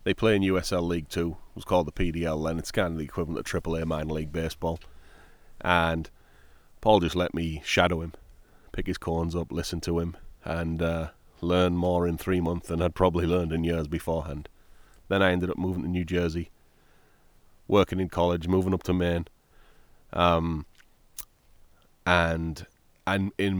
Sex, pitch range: male, 80-85 Hz